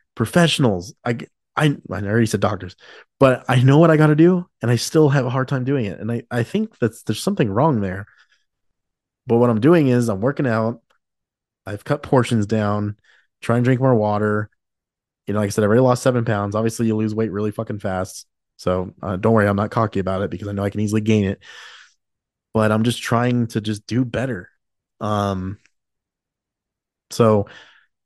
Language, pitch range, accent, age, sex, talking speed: English, 100-120 Hz, American, 20-39, male, 200 wpm